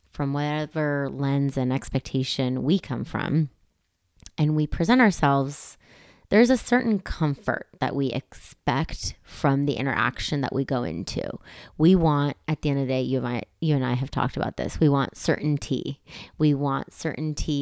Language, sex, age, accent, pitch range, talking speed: English, female, 20-39, American, 130-155 Hz, 165 wpm